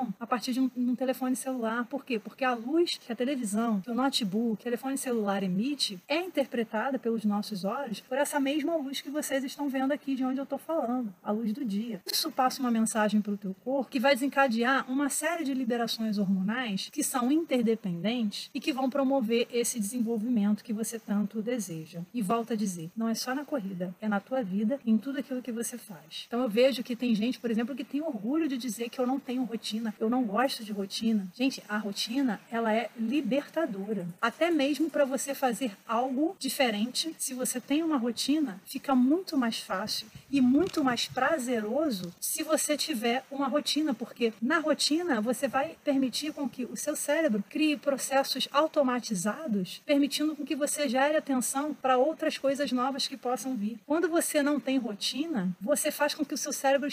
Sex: female